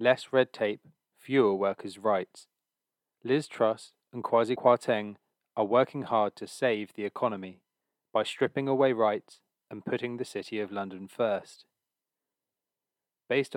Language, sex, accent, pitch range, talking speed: English, male, British, 105-130 Hz, 135 wpm